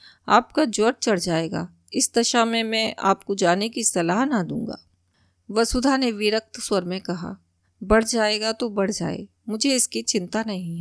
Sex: female